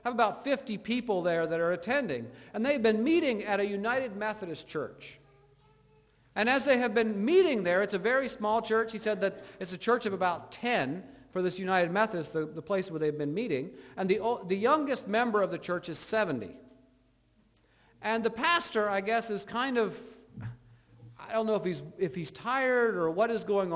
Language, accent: English, American